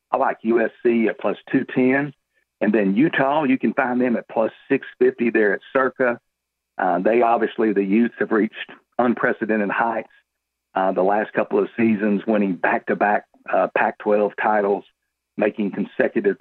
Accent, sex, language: American, male, English